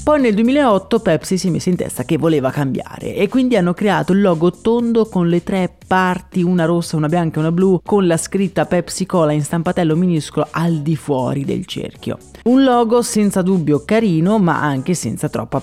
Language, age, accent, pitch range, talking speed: Italian, 30-49, native, 150-200 Hz, 200 wpm